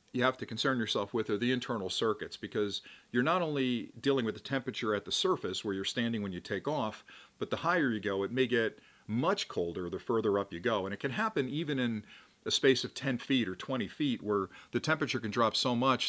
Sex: male